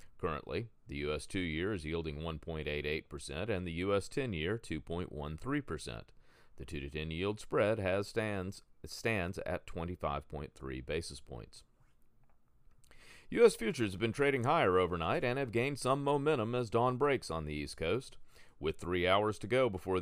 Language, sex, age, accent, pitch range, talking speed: English, male, 40-59, American, 80-120 Hz, 150 wpm